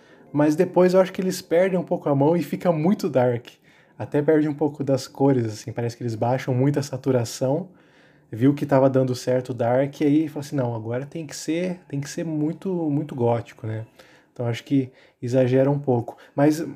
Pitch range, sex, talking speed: 130-160 Hz, male, 205 wpm